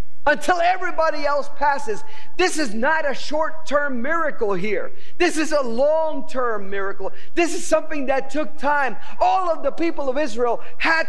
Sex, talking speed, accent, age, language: male, 155 wpm, American, 50-69, English